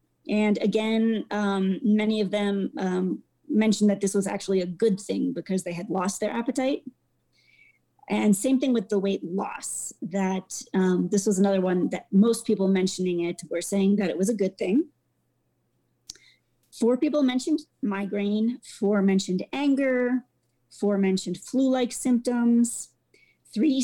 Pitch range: 190-230 Hz